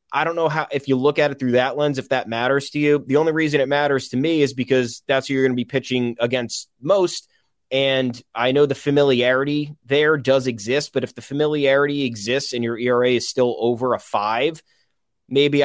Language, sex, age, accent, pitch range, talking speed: English, male, 20-39, American, 120-145 Hz, 220 wpm